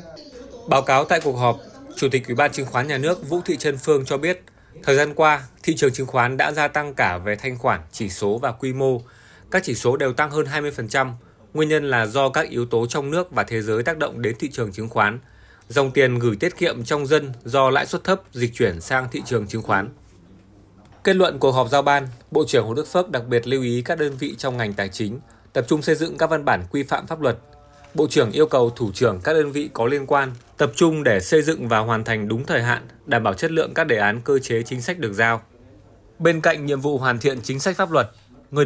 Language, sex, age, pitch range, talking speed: Vietnamese, male, 20-39, 115-150 Hz, 250 wpm